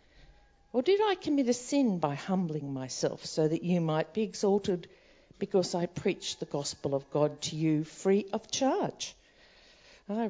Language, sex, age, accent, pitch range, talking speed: English, female, 50-69, Australian, 145-225 Hz, 165 wpm